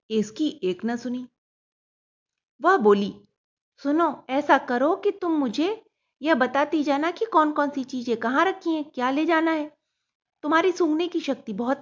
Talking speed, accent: 160 wpm, native